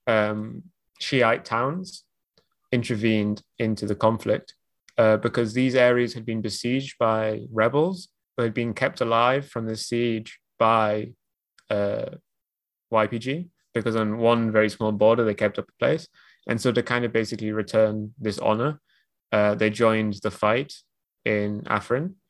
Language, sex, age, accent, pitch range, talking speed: English, male, 20-39, British, 105-120 Hz, 145 wpm